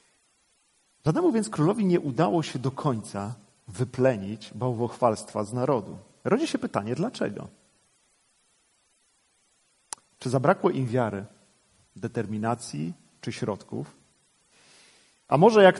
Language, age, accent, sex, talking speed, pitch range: Polish, 40-59, native, male, 100 wpm, 120-170 Hz